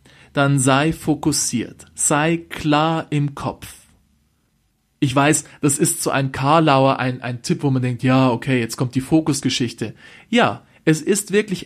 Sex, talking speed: male, 155 wpm